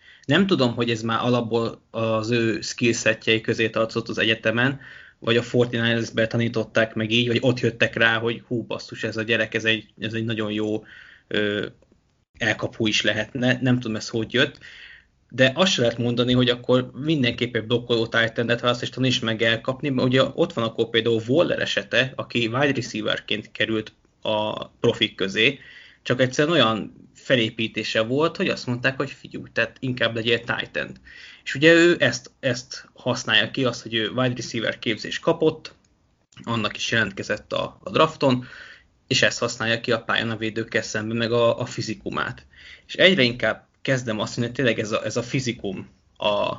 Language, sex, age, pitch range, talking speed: Hungarian, male, 20-39, 110-125 Hz, 175 wpm